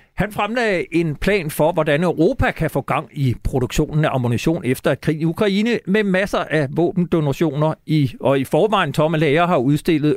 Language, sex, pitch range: Danish, male, 130-165 Hz